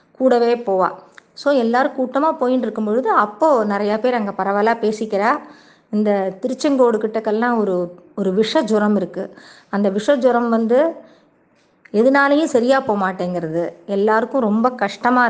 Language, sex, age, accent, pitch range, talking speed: Tamil, female, 20-39, native, 200-245 Hz, 125 wpm